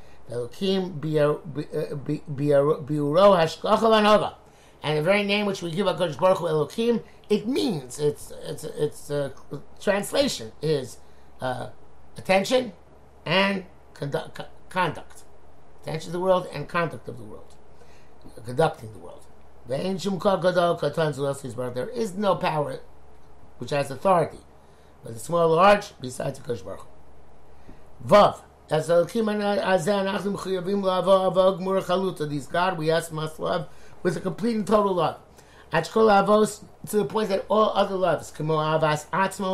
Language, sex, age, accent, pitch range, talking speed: English, male, 60-79, American, 140-190 Hz, 125 wpm